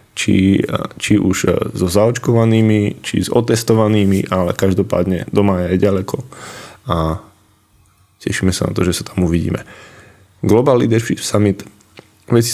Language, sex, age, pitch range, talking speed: Slovak, male, 20-39, 95-105 Hz, 130 wpm